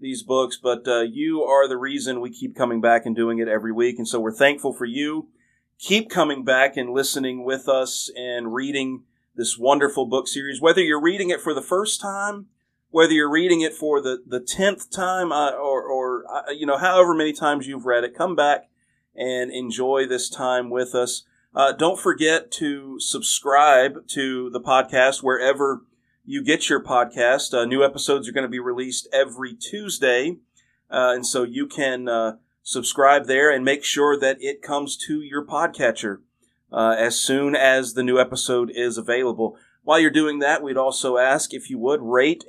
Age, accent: 40-59, American